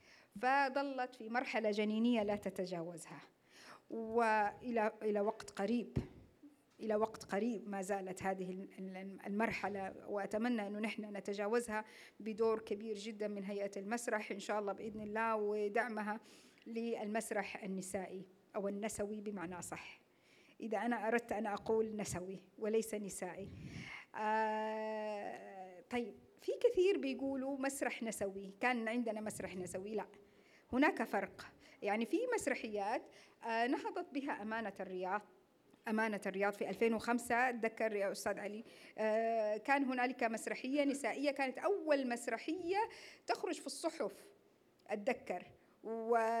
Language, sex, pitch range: Arabic, female, 210-310 Hz